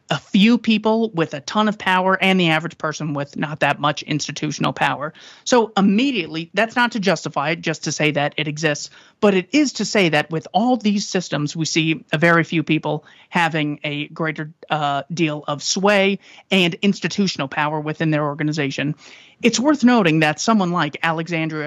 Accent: American